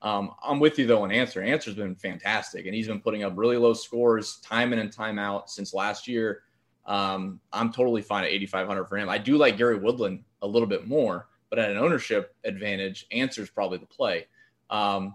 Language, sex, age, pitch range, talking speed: English, male, 20-39, 100-120 Hz, 215 wpm